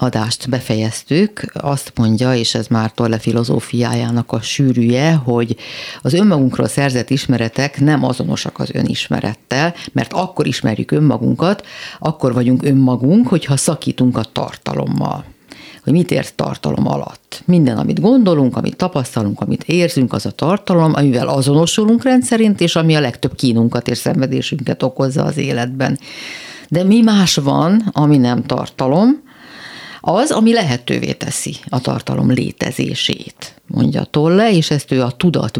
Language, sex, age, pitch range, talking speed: Hungarian, female, 50-69, 125-165 Hz, 135 wpm